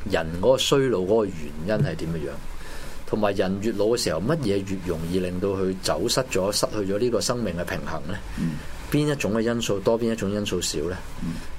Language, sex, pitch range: Chinese, male, 85-120 Hz